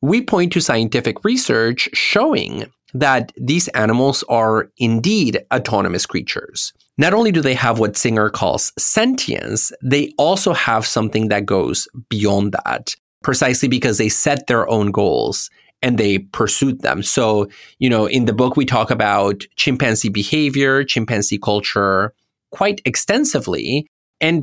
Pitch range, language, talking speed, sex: 110-140 Hz, English, 140 wpm, male